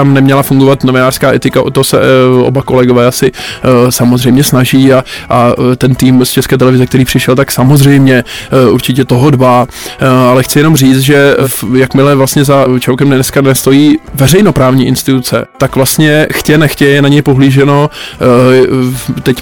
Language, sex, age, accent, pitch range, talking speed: Czech, male, 20-39, native, 130-140 Hz, 150 wpm